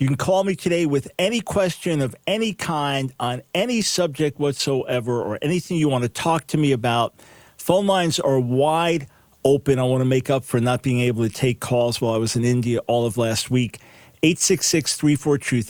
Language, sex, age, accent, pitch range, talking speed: English, male, 40-59, American, 130-170 Hz, 195 wpm